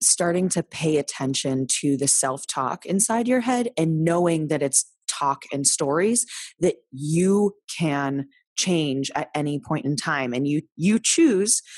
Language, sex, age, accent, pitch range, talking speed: English, female, 20-39, American, 140-185 Hz, 155 wpm